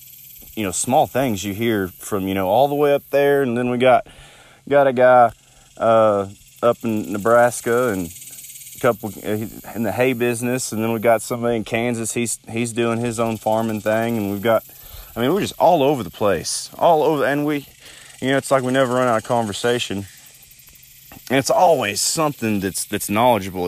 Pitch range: 100-120 Hz